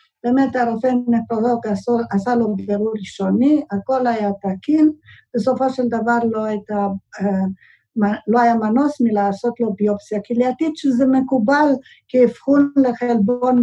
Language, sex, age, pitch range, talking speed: Hebrew, female, 50-69, 210-255 Hz, 115 wpm